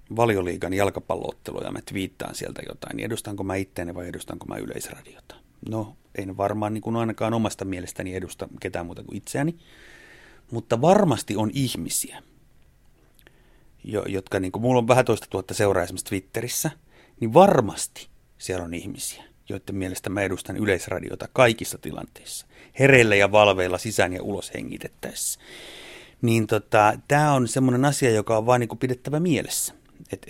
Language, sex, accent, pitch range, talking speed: Finnish, male, native, 95-130 Hz, 145 wpm